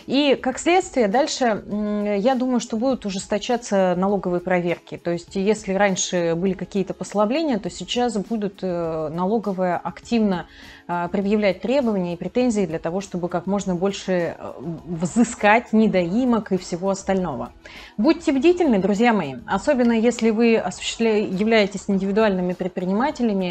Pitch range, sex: 185-240 Hz, female